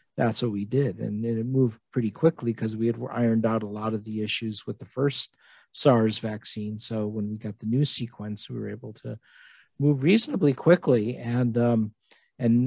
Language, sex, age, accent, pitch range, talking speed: English, male, 50-69, American, 110-125 Hz, 195 wpm